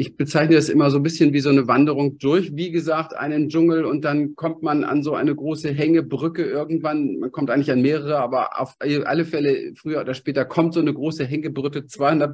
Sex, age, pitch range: male, 40-59, 130-160 Hz